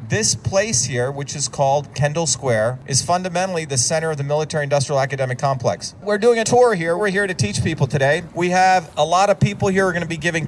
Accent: American